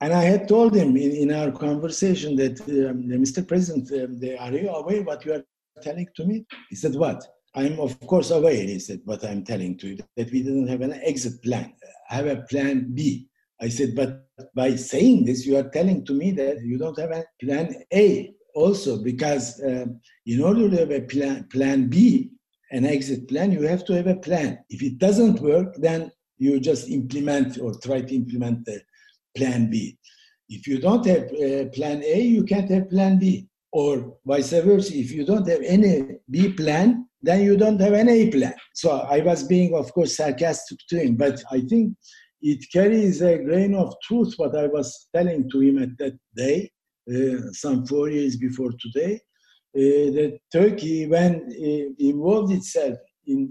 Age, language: 60-79, English